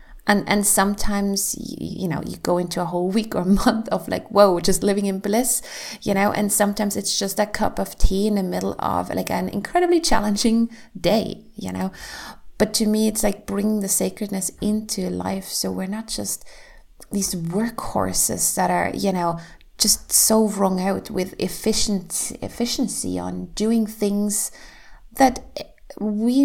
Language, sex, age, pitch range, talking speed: English, female, 30-49, 195-225 Hz, 170 wpm